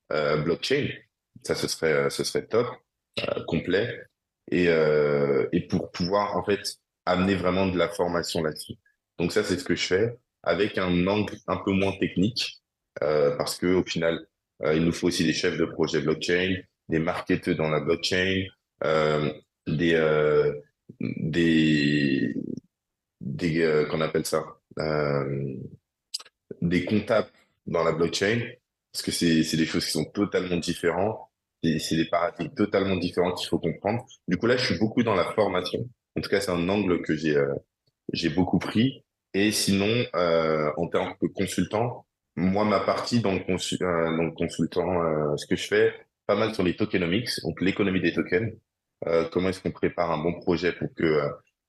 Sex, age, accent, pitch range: male, 20-39, French, 80-95 Hz